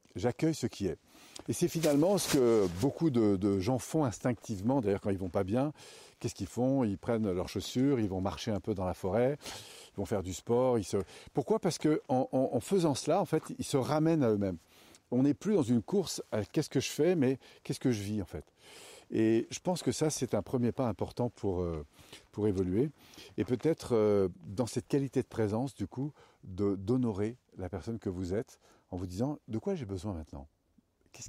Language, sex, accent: French, male, French